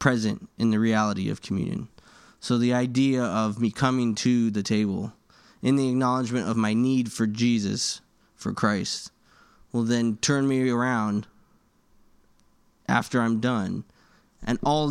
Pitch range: 110-130 Hz